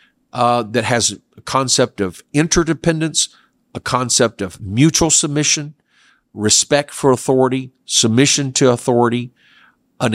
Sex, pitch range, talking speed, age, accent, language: male, 105-130 Hz, 110 wpm, 50-69, American, English